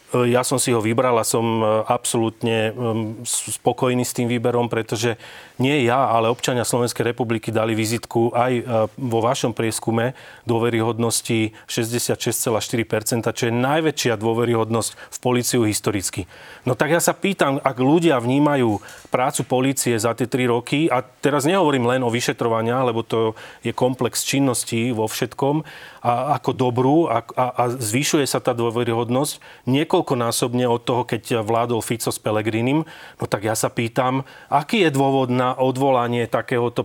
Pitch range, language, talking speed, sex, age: 115-135 Hz, Slovak, 145 wpm, male, 30-49